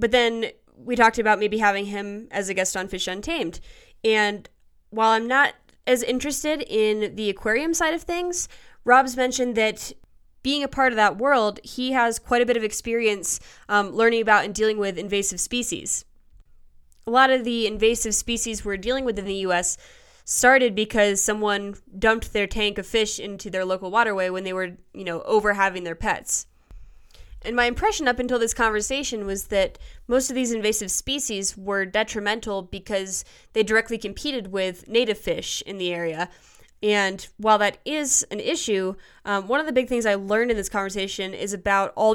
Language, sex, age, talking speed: English, female, 10-29, 185 wpm